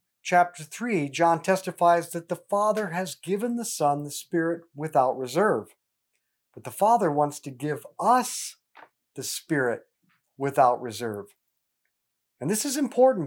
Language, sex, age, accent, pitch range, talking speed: English, male, 50-69, American, 145-205 Hz, 135 wpm